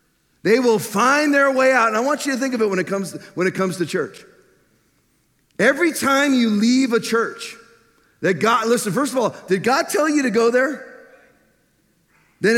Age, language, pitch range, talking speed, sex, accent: 40-59, English, 190-240 Hz, 190 wpm, male, American